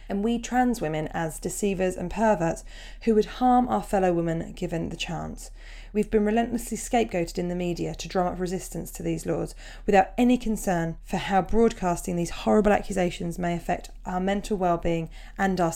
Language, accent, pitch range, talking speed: English, British, 175-215 Hz, 180 wpm